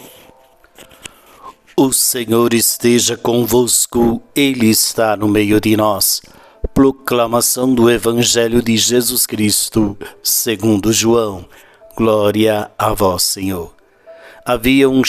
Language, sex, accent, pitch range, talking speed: Portuguese, male, Brazilian, 105-125 Hz, 95 wpm